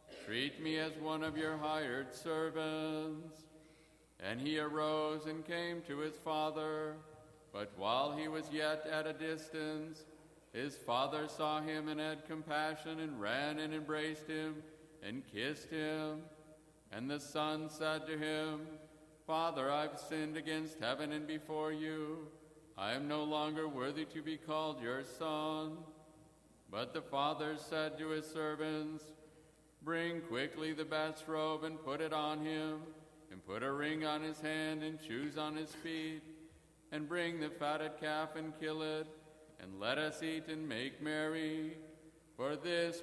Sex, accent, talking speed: male, American, 150 wpm